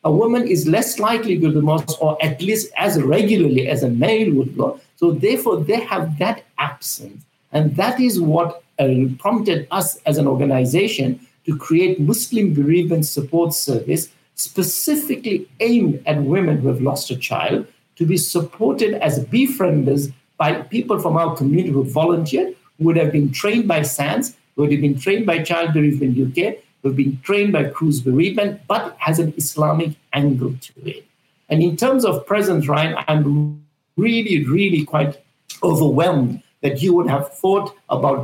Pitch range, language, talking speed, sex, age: 140-190 Hz, English, 170 wpm, male, 60-79